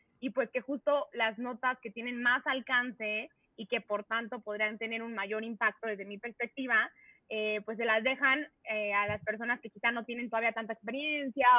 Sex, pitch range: female, 215-255 Hz